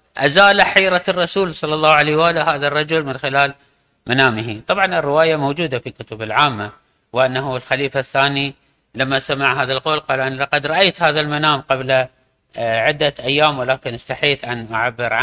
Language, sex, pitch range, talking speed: Arabic, male, 130-170 Hz, 150 wpm